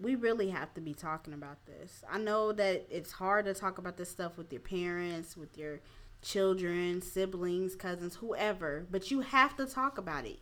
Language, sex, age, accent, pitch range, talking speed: English, female, 20-39, American, 160-200 Hz, 195 wpm